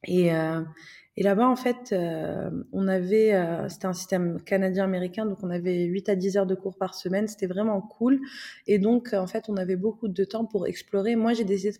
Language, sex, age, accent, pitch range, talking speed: French, female, 20-39, French, 190-225 Hz, 220 wpm